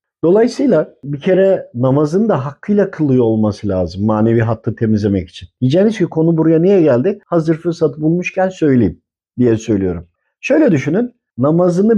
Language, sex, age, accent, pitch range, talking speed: Turkish, male, 50-69, native, 115-170 Hz, 140 wpm